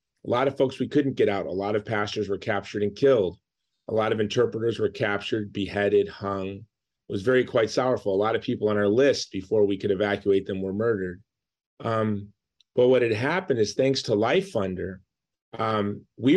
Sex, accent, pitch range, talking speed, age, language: male, American, 100-120 Hz, 200 wpm, 30-49, English